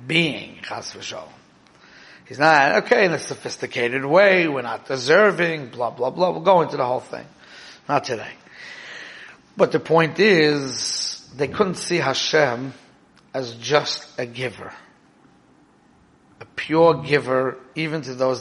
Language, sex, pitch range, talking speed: English, male, 130-155 Hz, 135 wpm